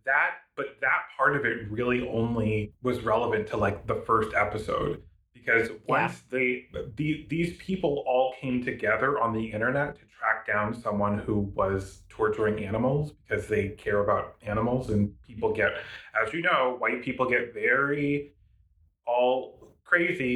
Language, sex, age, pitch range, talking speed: English, male, 30-49, 105-125 Hz, 155 wpm